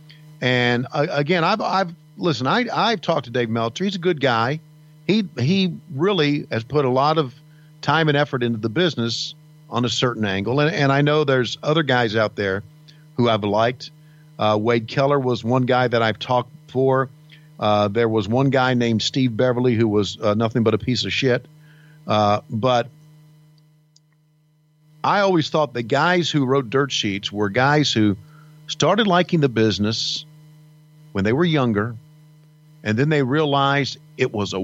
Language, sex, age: English, male, 50-69